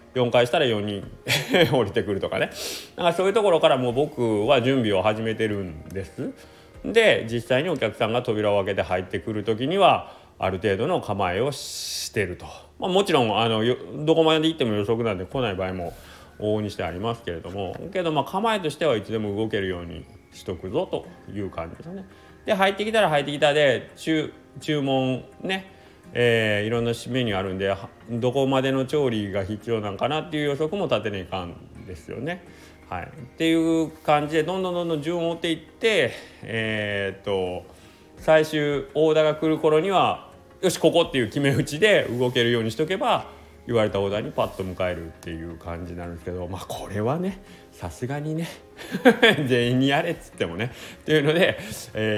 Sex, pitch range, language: male, 100-155 Hz, Japanese